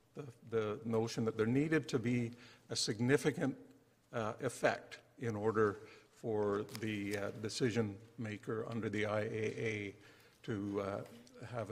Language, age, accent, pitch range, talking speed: English, 60-79, American, 110-130 Hz, 130 wpm